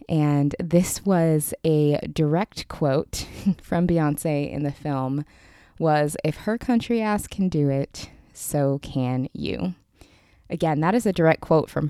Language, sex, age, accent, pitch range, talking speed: English, female, 20-39, American, 140-175 Hz, 145 wpm